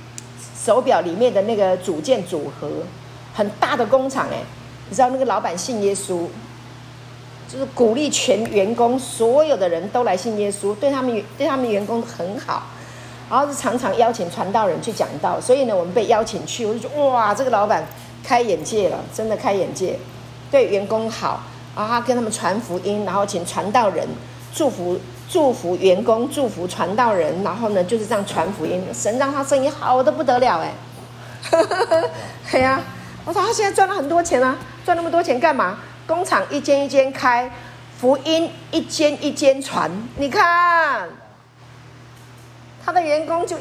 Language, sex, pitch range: Chinese, female, 195-295 Hz